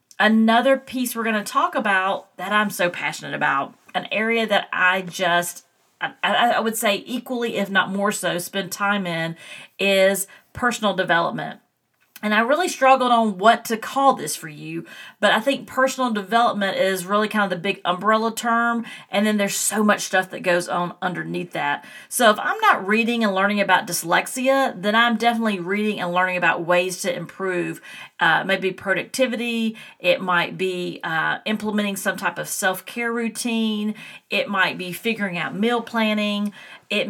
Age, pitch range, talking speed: 40-59, 185-235 Hz, 175 wpm